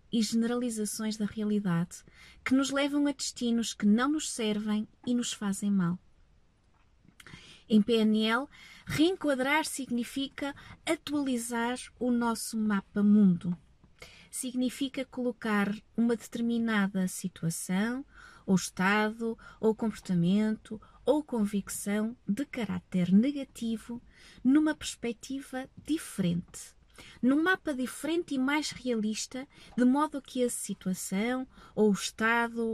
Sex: female